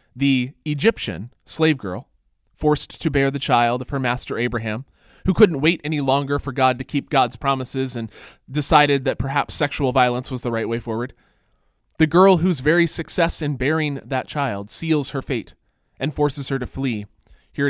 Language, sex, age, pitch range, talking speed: English, male, 20-39, 115-150 Hz, 180 wpm